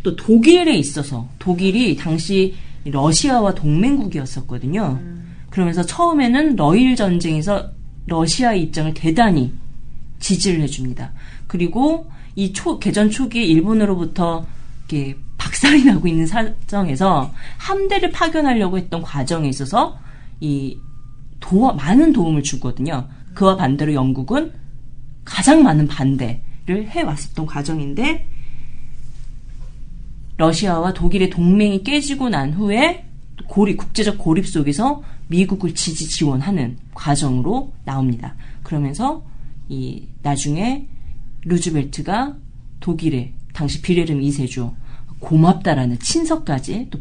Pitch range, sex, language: 135-195 Hz, female, Korean